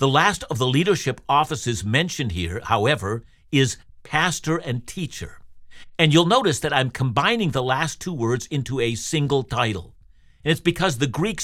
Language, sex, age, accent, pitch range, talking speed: English, male, 60-79, American, 115-165 Hz, 170 wpm